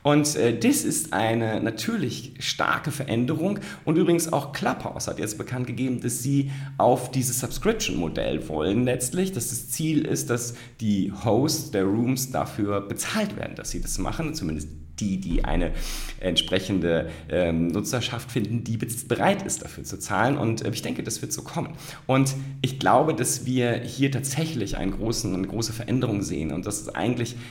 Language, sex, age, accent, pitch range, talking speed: German, male, 40-59, German, 105-140 Hz, 165 wpm